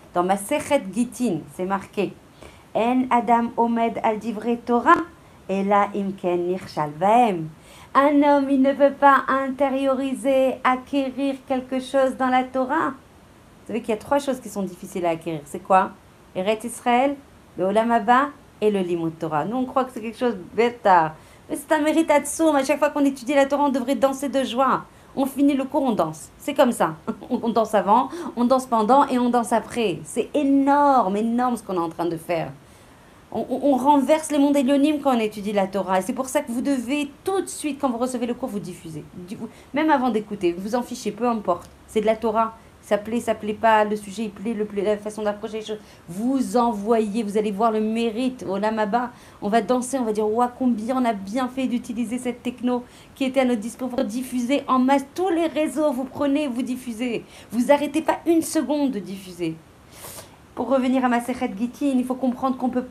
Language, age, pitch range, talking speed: French, 40-59, 215-270 Hz, 205 wpm